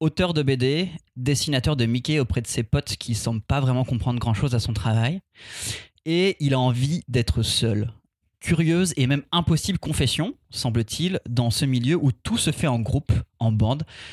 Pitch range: 115-145 Hz